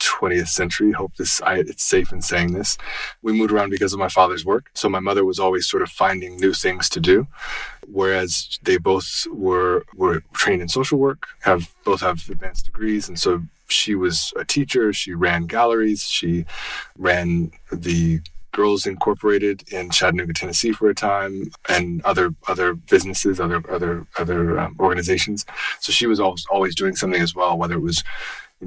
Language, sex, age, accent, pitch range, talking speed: English, male, 30-49, American, 85-95 Hz, 180 wpm